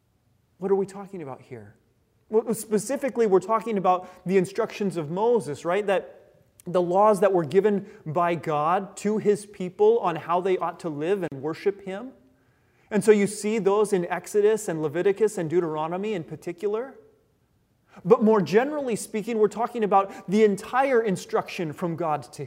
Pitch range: 160-215 Hz